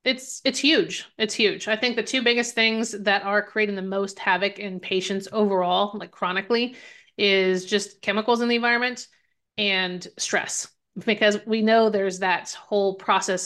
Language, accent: English, American